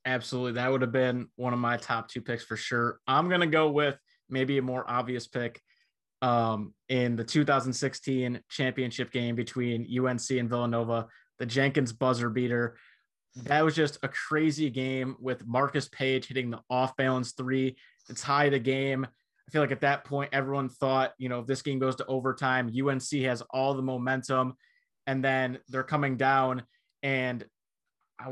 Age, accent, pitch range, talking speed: 20-39, American, 120-135 Hz, 175 wpm